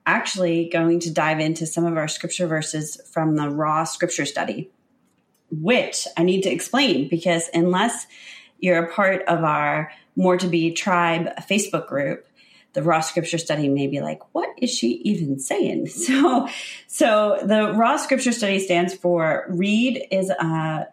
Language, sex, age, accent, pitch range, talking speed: English, female, 30-49, American, 145-185 Hz, 160 wpm